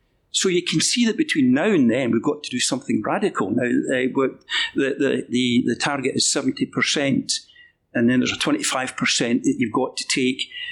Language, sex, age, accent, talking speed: English, male, 50-69, British, 185 wpm